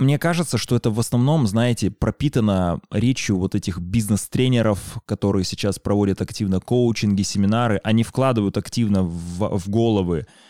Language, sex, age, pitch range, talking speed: Russian, male, 20-39, 100-145 Hz, 135 wpm